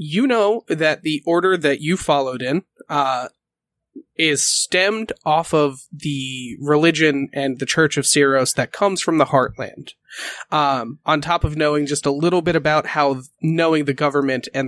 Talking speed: 170 wpm